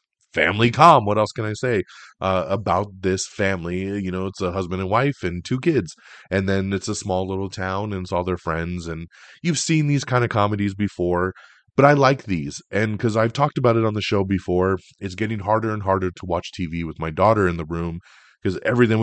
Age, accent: 30-49, American